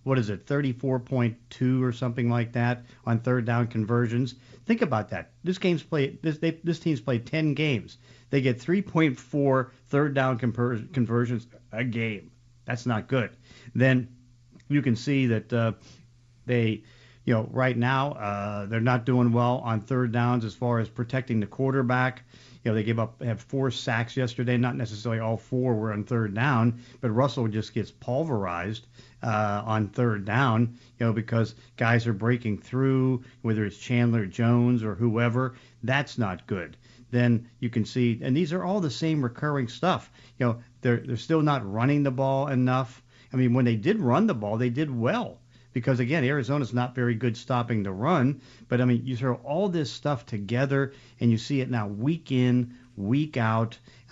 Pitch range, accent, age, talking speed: 115-135 Hz, American, 50-69, 175 wpm